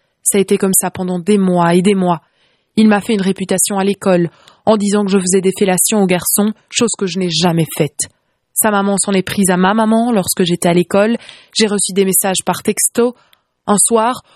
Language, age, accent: French, 20-39, French